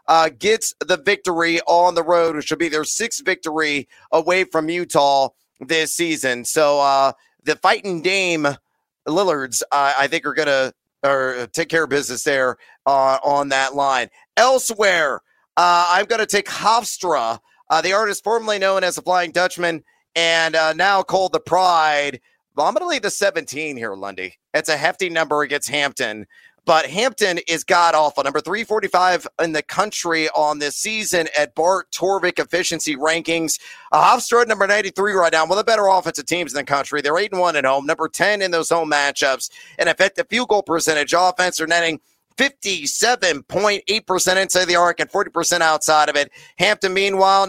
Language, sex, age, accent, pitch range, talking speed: English, male, 40-59, American, 150-190 Hz, 175 wpm